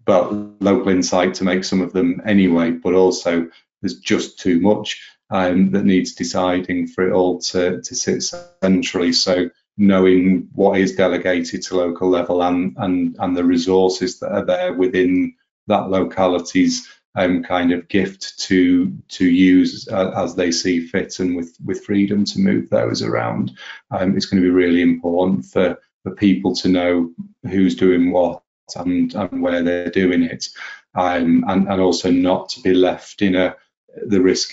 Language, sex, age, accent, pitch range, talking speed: English, male, 30-49, British, 90-100 Hz, 170 wpm